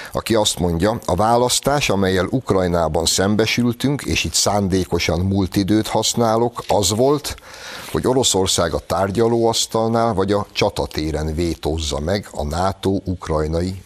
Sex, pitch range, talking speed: male, 80-110 Hz, 120 wpm